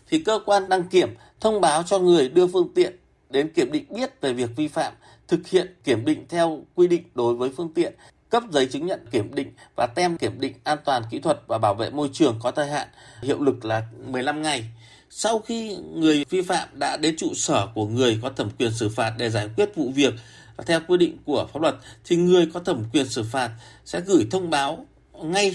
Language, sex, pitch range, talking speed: Vietnamese, male, 125-185 Hz, 230 wpm